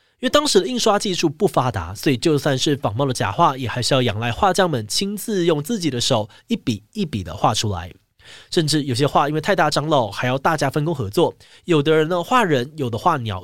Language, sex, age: Chinese, male, 20-39